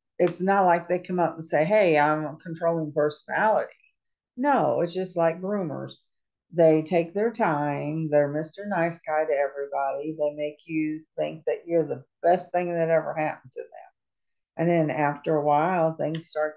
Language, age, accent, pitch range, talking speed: English, 50-69, American, 150-180 Hz, 180 wpm